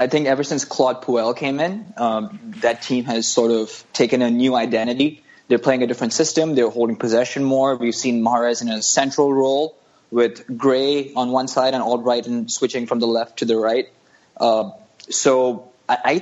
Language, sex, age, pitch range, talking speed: English, male, 20-39, 115-150 Hz, 190 wpm